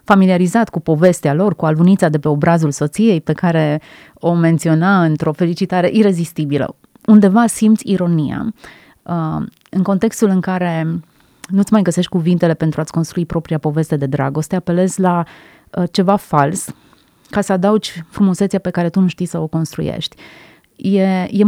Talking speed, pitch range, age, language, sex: 150 wpm, 160-195 Hz, 30-49, Romanian, female